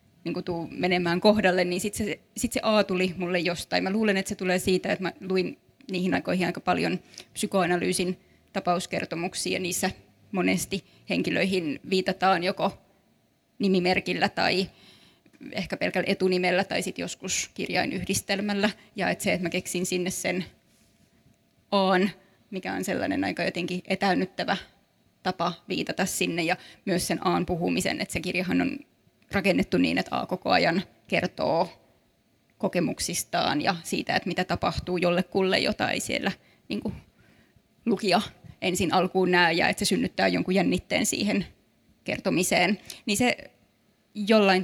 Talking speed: 140 wpm